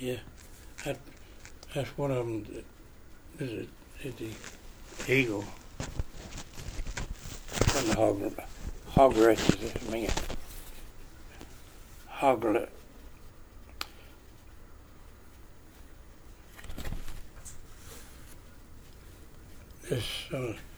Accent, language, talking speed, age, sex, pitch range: American, English, 50 wpm, 60-79, male, 85-110 Hz